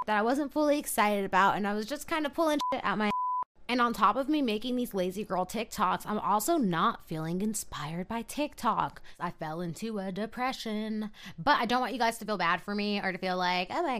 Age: 20-39